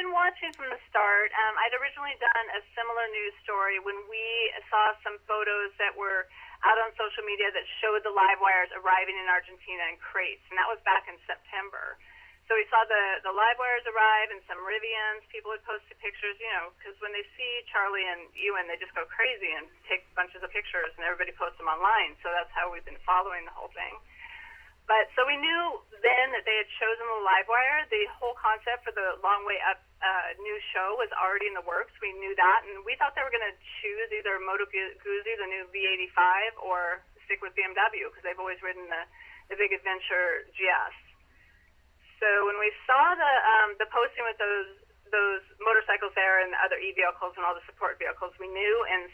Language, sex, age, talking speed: English, female, 30-49, 205 wpm